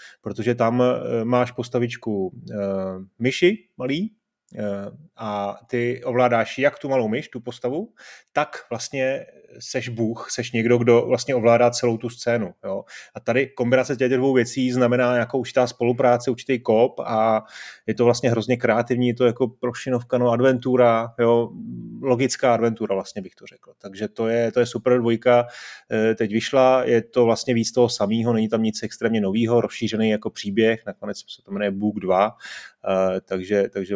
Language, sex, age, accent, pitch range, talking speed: Czech, male, 30-49, native, 110-130 Hz, 155 wpm